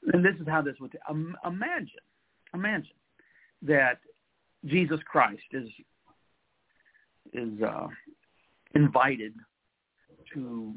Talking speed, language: 90 wpm, English